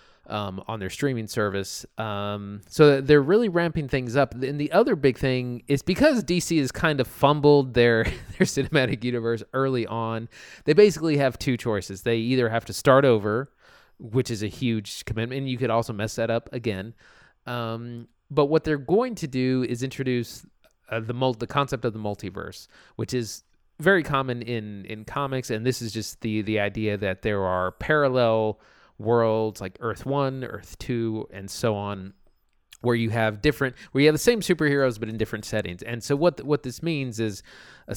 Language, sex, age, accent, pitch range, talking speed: English, male, 20-39, American, 110-140 Hz, 190 wpm